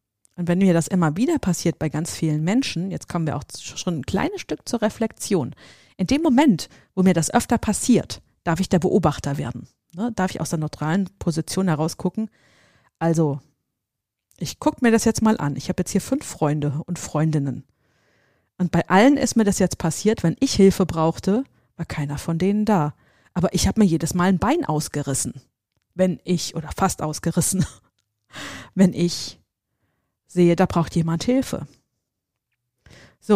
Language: German